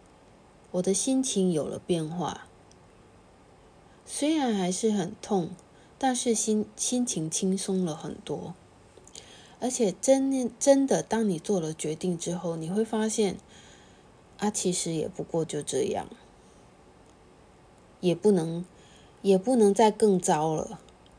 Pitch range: 175-225 Hz